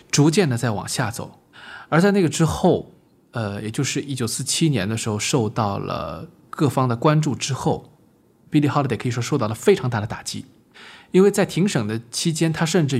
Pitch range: 120-165 Hz